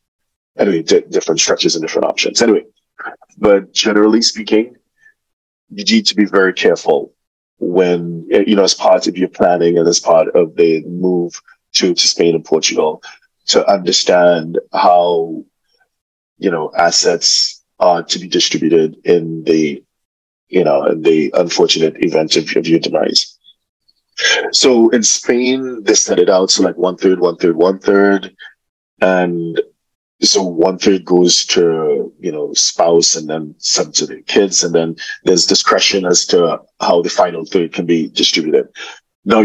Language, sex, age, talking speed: English, male, 30-49, 150 wpm